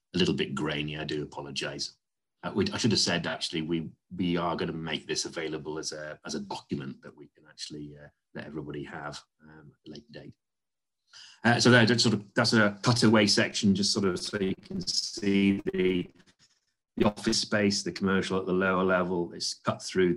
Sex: male